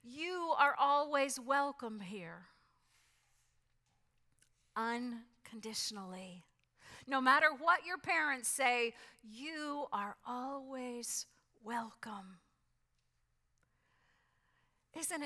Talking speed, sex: 65 wpm, female